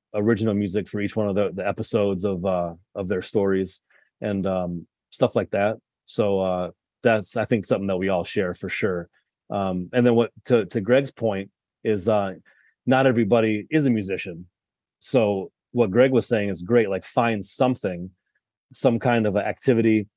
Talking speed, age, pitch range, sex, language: 180 wpm, 30-49, 95-115 Hz, male, English